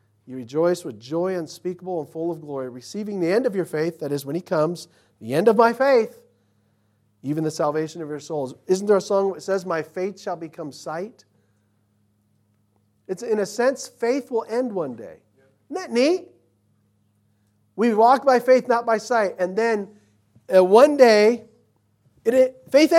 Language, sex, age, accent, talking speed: English, male, 50-69, American, 175 wpm